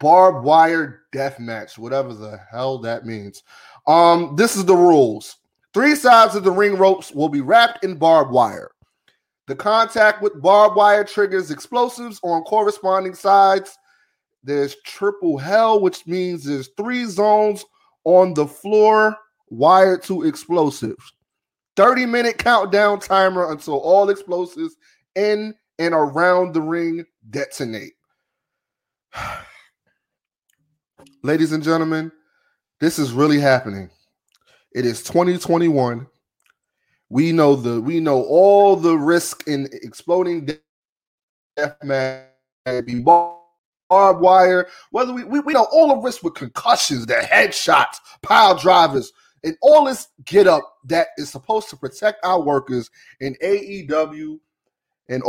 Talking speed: 125 wpm